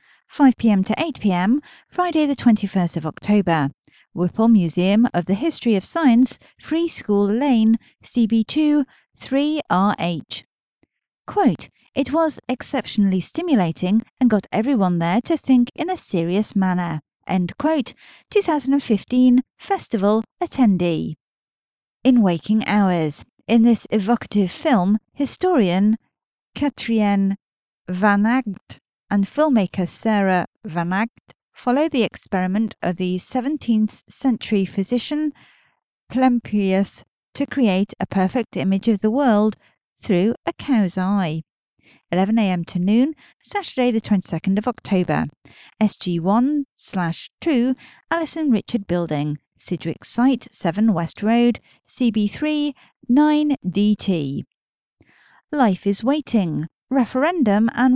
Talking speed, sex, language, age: 100 wpm, female, English, 40-59